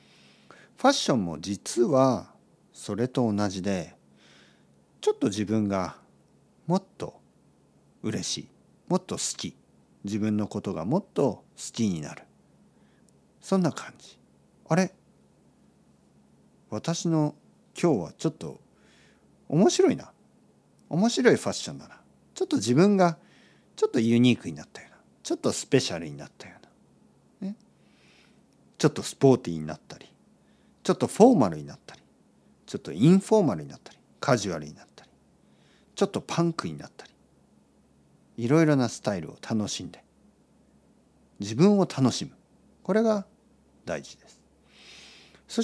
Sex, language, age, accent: male, Japanese, 50-69, native